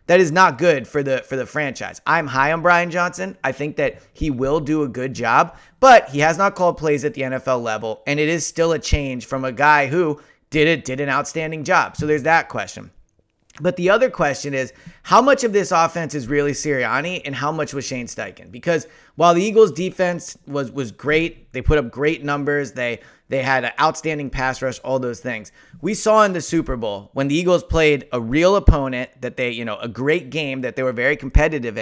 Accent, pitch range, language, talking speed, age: American, 135-175 Hz, English, 225 wpm, 30-49